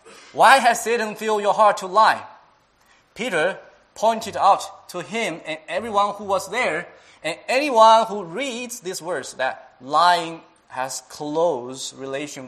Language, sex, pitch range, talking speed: English, male, 155-215 Hz, 140 wpm